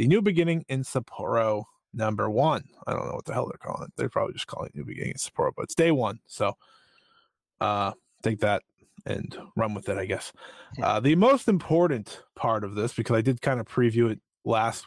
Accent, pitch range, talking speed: American, 115-155 Hz, 220 wpm